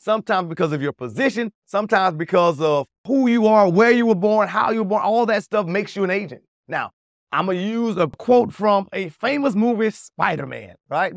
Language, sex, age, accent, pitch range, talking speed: English, male, 30-49, American, 170-220 Hz, 210 wpm